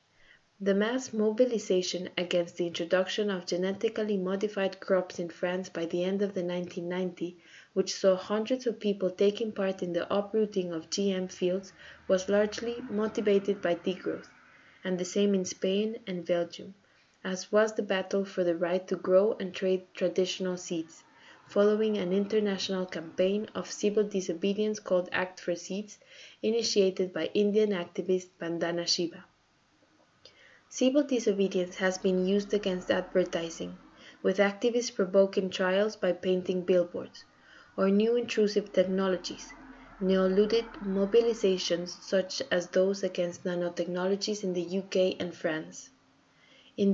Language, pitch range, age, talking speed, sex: English, 180-210 Hz, 20-39, 135 wpm, female